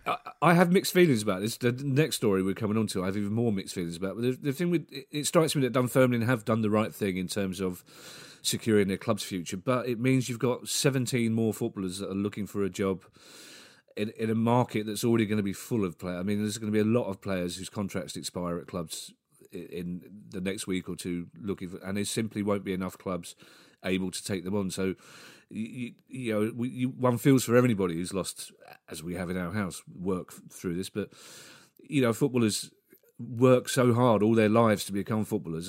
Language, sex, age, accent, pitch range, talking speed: English, male, 40-59, British, 95-125 Hz, 225 wpm